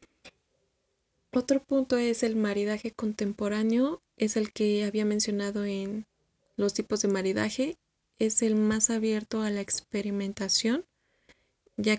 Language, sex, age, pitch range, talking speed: Spanish, female, 20-39, 205-220 Hz, 120 wpm